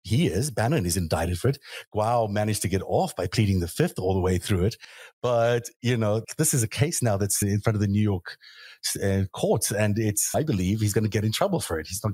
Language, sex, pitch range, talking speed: English, male, 95-115 Hz, 255 wpm